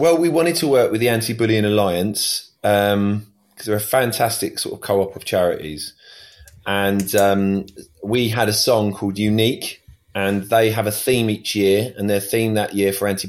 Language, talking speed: English, 190 wpm